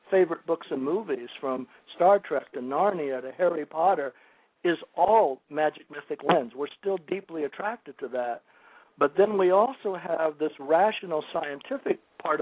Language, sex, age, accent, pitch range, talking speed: English, male, 60-79, American, 145-195 Hz, 155 wpm